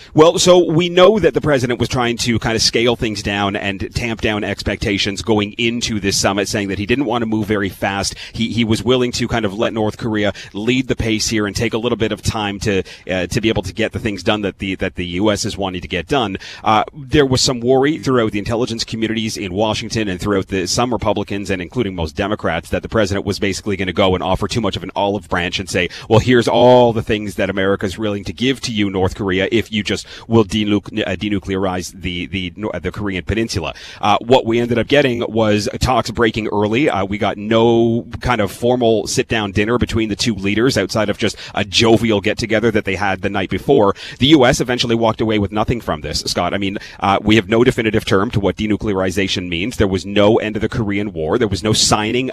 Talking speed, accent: 235 wpm, American